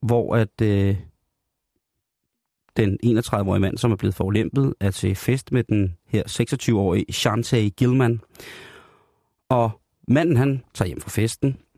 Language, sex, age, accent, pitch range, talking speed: Danish, male, 30-49, native, 105-125 Hz, 135 wpm